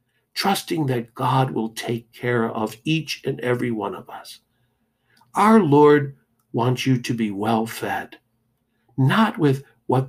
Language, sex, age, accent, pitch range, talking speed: English, male, 60-79, American, 115-130 Hz, 135 wpm